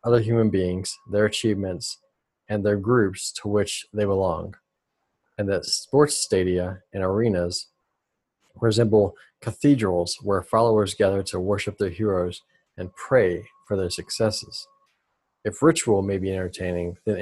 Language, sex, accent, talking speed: English, male, American, 130 wpm